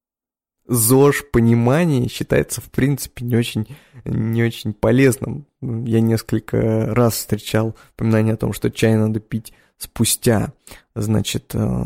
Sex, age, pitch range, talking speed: male, 20-39, 110-125 Hz, 110 wpm